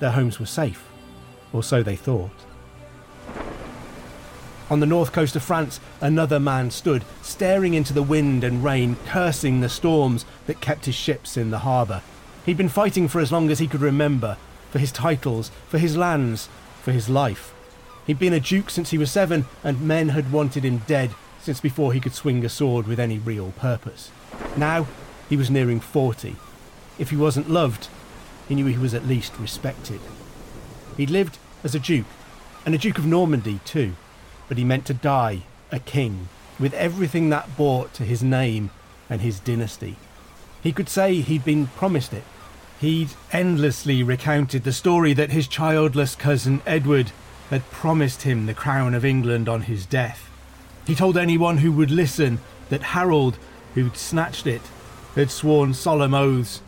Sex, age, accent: male, 40-59, British